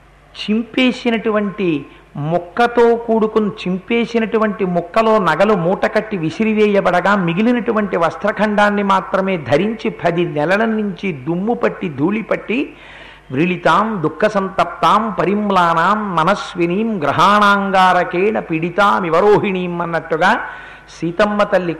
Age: 50-69